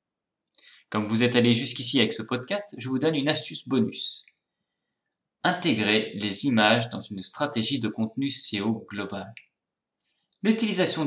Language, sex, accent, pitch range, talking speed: French, male, French, 110-150 Hz, 140 wpm